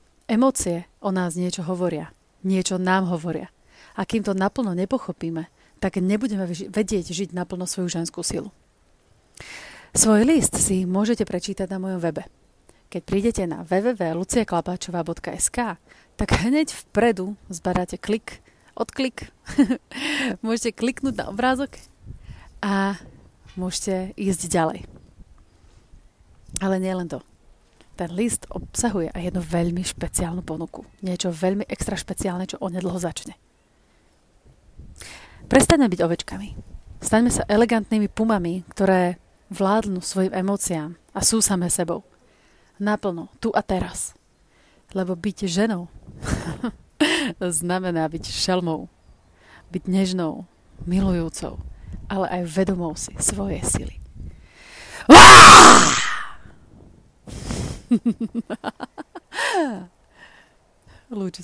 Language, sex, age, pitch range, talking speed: Slovak, female, 30-49, 175-210 Hz, 100 wpm